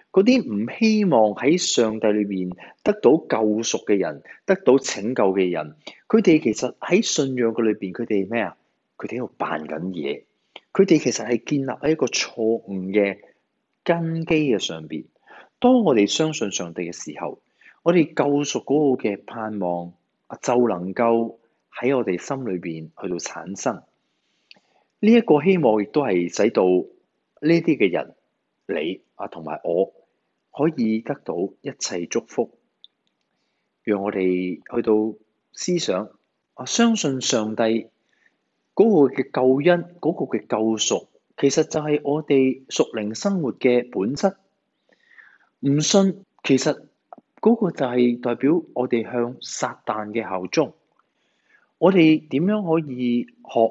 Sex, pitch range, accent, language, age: male, 105-160 Hz, native, Chinese, 30-49